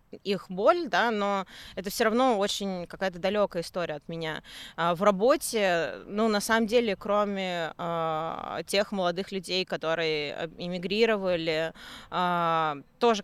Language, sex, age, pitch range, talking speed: Russian, female, 20-39, 175-215 Hz, 125 wpm